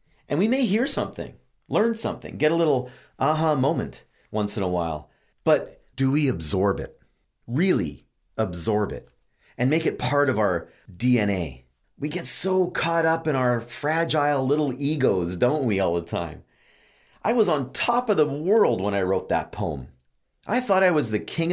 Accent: American